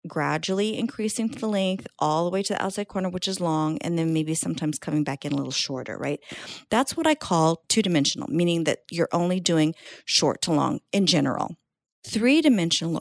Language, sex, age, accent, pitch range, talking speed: English, female, 40-59, American, 150-195 Hz, 190 wpm